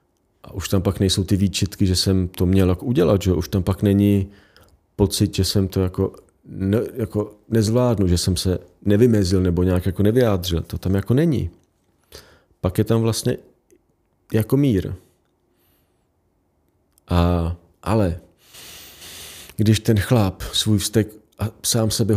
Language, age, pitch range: Czech, 40-59, 90-105 Hz